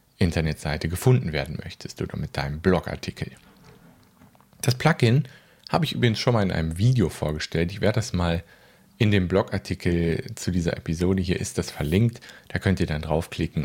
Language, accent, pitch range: German, German, 85-115 Hz